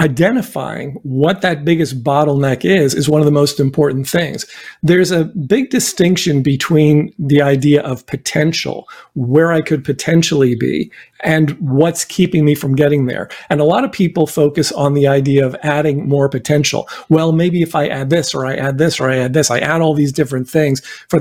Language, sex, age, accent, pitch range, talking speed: English, male, 50-69, American, 140-170 Hz, 190 wpm